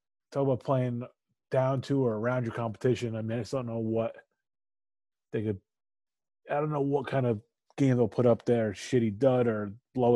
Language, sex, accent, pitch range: English, male, American, 120-170 Hz